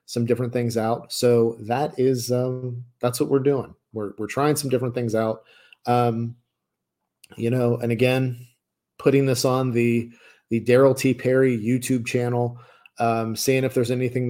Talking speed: 165 wpm